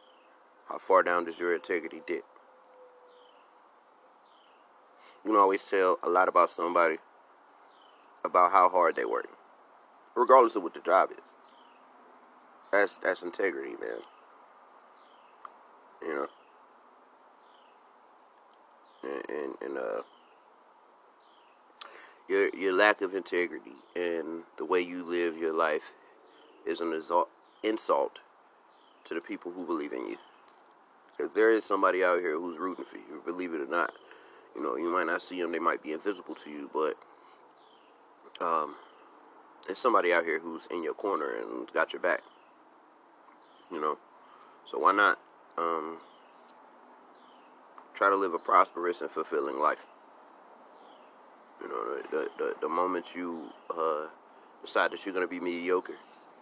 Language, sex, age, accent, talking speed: English, male, 30-49, American, 140 wpm